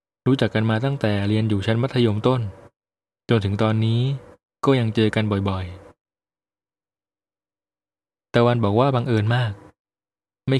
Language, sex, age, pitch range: Thai, male, 20-39, 100-120 Hz